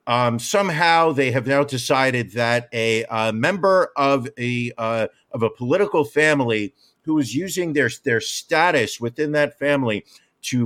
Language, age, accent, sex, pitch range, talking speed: English, 50-69, American, male, 120-150 Hz, 150 wpm